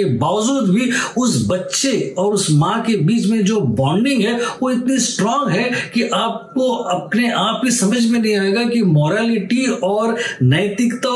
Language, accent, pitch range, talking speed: Hindi, native, 190-235 Hz, 160 wpm